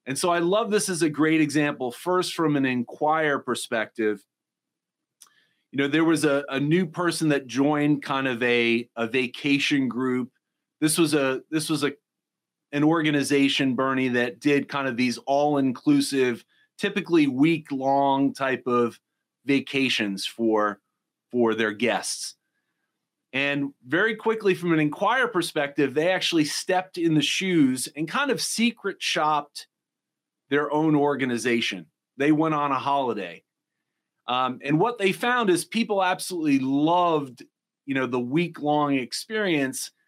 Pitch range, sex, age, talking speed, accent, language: 135-175 Hz, male, 30-49, 140 wpm, American, English